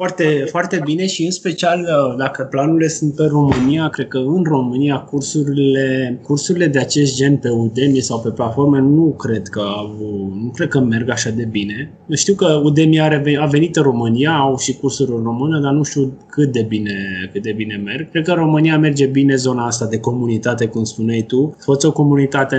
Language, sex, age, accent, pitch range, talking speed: Romanian, male, 20-39, native, 115-150 Hz, 200 wpm